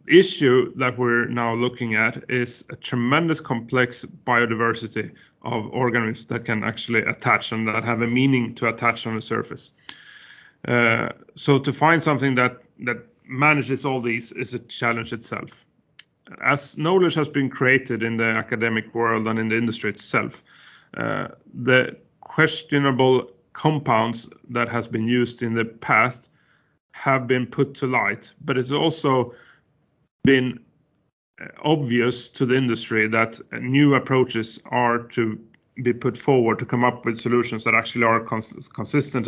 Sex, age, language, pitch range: male, 30-49, English, 115-130 Hz